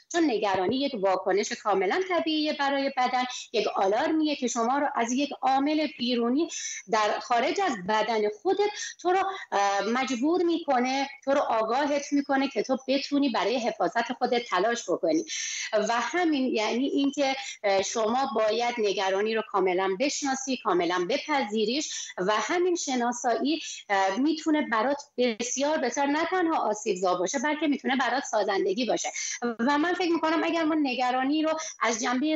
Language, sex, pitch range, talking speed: Persian, female, 220-305 Hz, 140 wpm